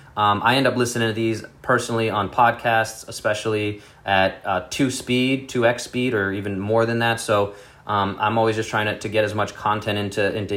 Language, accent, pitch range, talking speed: English, American, 105-125 Hz, 210 wpm